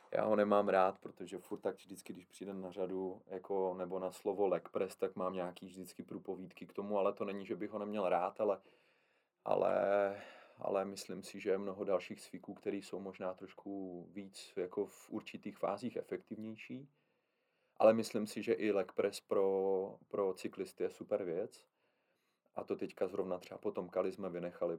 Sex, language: male, Czech